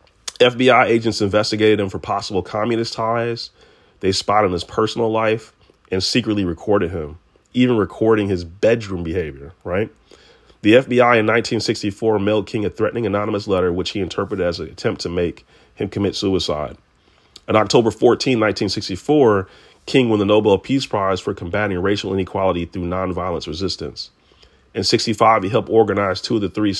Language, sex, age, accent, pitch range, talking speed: English, male, 30-49, American, 95-110 Hz, 155 wpm